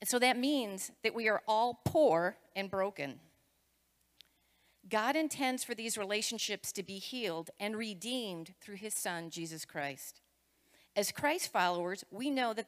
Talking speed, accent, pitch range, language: 150 wpm, American, 180-250 Hz, English